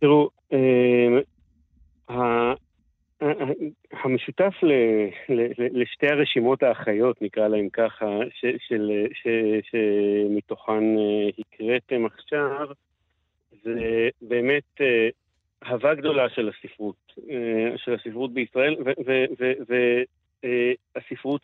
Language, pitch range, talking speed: Hebrew, 115-140 Hz, 85 wpm